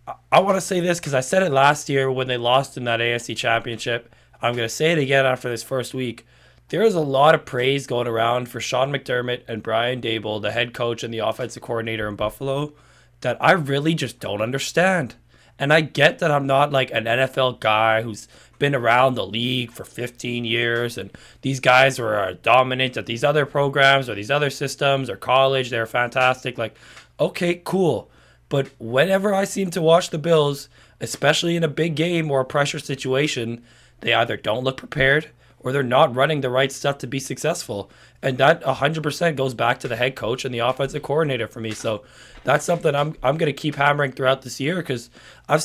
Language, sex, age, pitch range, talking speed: English, male, 20-39, 120-145 Hz, 205 wpm